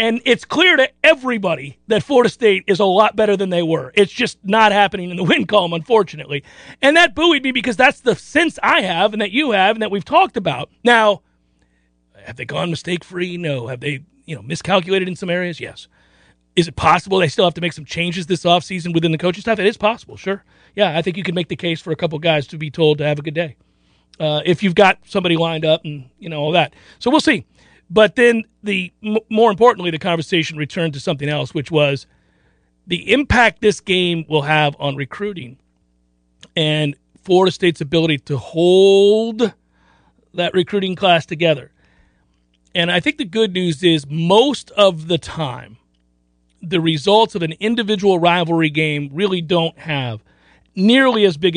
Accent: American